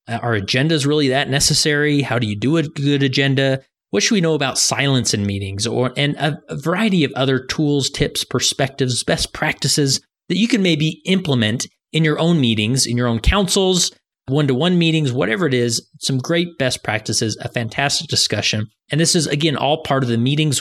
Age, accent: 30-49, American